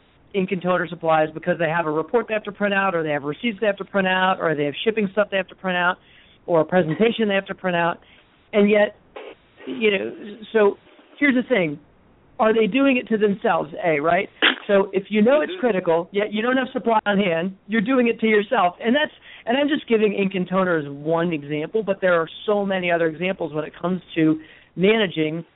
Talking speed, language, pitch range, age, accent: 230 wpm, English, 160-205 Hz, 50-69, American